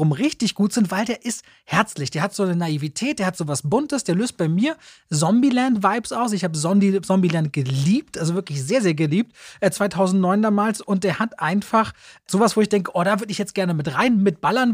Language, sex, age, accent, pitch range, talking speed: German, male, 30-49, German, 160-210 Hz, 210 wpm